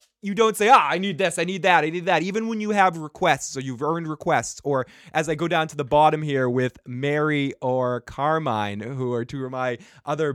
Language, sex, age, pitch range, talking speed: English, male, 20-39, 125-170 Hz, 240 wpm